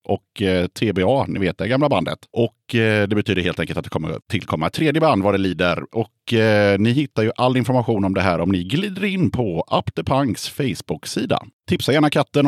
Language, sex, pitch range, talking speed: Swedish, male, 95-140 Hz, 190 wpm